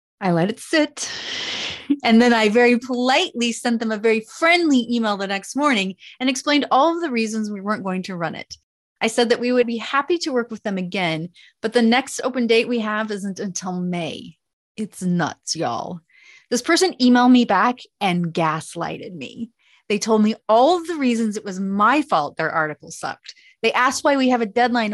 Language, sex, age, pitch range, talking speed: English, female, 30-49, 185-255 Hz, 200 wpm